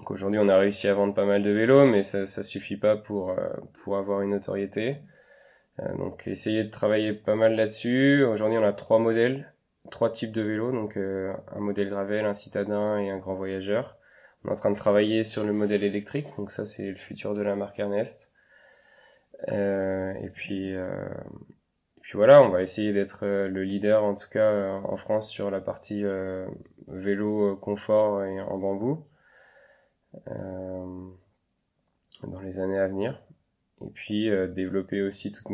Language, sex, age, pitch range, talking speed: French, male, 20-39, 95-110 Hz, 180 wpm